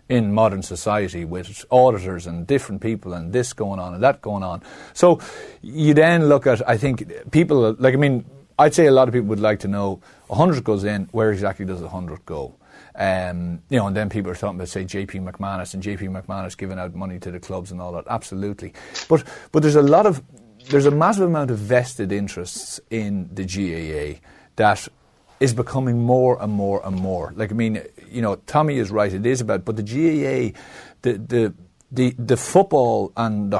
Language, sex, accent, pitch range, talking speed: English, male, Irish, 95-125 Hz, 205 wpm